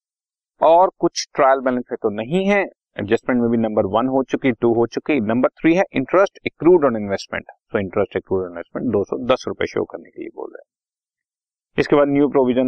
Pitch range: 115-165 Hz